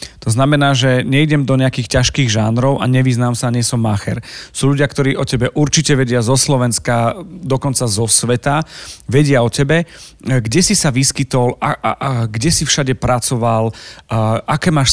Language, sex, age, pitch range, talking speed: Slovak, male, 40-59, 115-140 Hz, 175 wpm